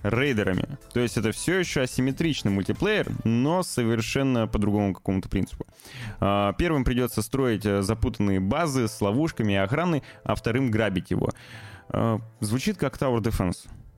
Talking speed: 135 wpm